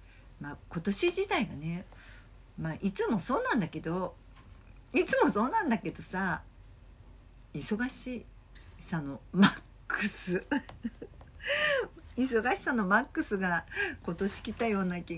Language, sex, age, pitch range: Japanese, female, 50-69, 135-210 Hz